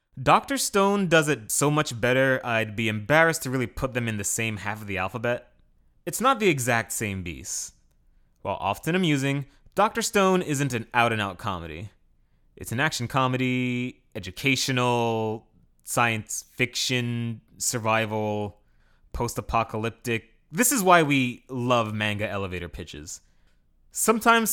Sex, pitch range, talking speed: male, 105-140 Hz, 130 wpm